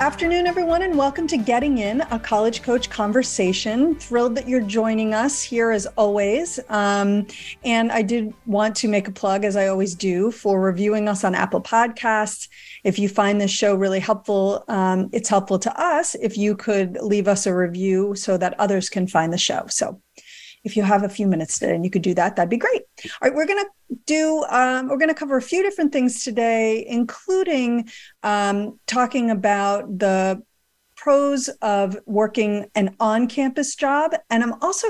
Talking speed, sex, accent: 185 wpm, female, American